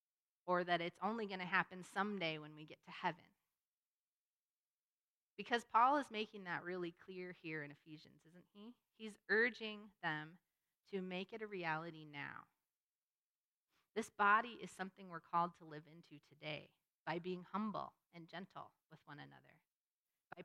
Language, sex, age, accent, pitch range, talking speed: English, female, 30-49, American, 165-205 Hz, 155 wpm